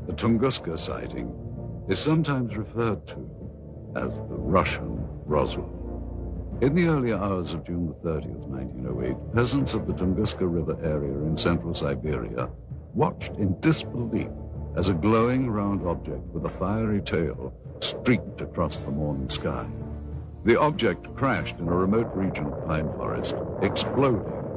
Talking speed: 140 wpm